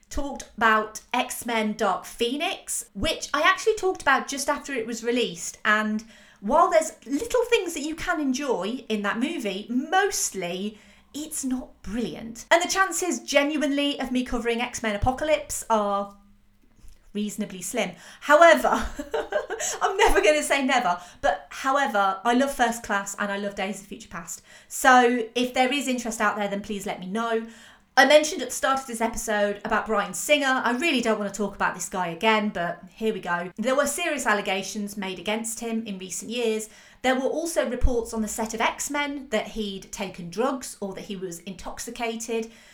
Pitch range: 210-280 Hz